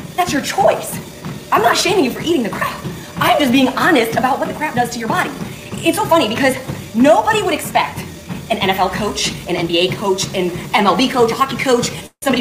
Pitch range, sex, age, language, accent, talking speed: 205-270 Hz, female, 20-39, English, American, 210 wpm